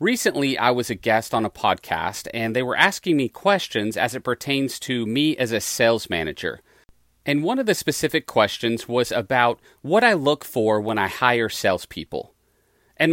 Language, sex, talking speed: English, male, 185 wpm